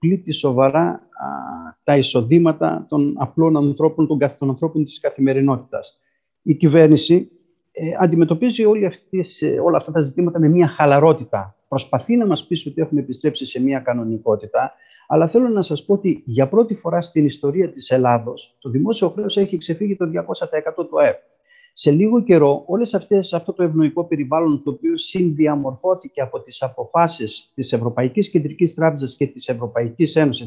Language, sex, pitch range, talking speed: Greek, male, 140-175 Hz, 160 wpm